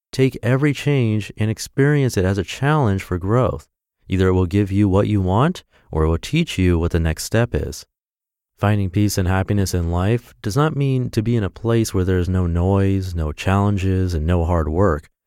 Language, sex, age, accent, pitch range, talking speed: English, male, 30-49, American, 90-120 Hz, 210 wpm